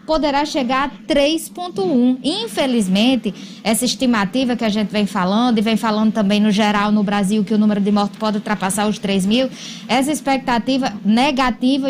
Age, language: 10-29, Portuguese